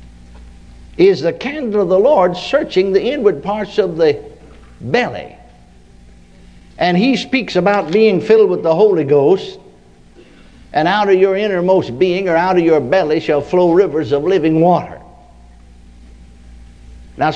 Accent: American